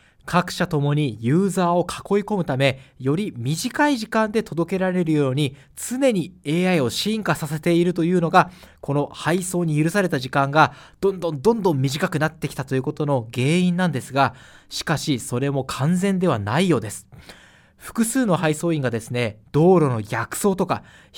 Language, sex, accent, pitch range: Japanese, male, native, 130-185 Hz